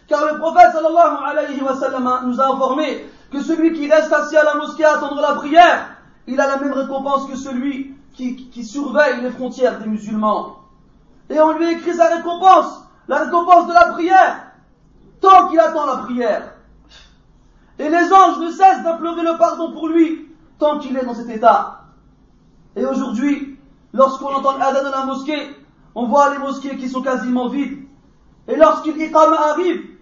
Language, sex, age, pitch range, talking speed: French, male, 40-59, 265-325 Hz, 180 wpm